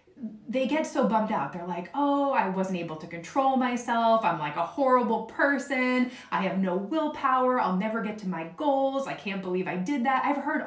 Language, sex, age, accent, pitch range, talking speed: English, female, 30-49, American, 180-245 Hz, 210 wpm